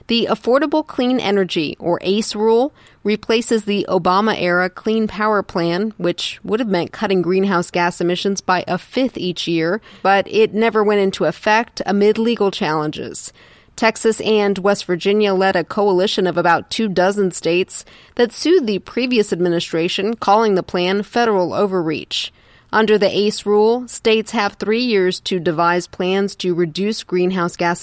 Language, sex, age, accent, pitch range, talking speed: English, female, 30-49, American, 180-220 Hz, 155 wpm